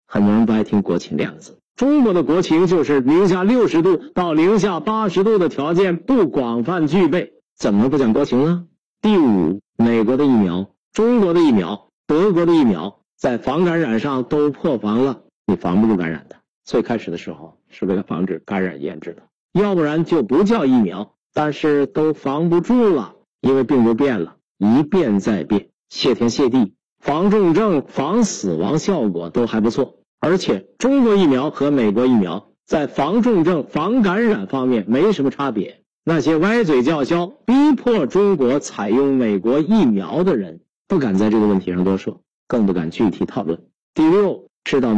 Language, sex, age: Chinese, male, 50-69